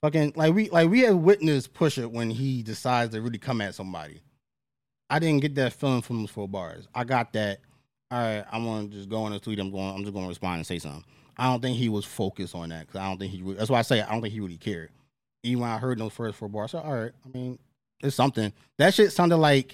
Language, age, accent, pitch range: English, 20-39, American, 105-140 Hz